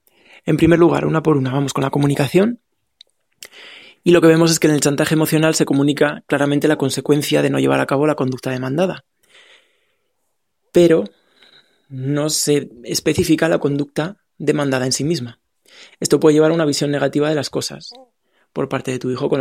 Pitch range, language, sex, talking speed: 140-165 Hz, Spanish, male, 180 wpm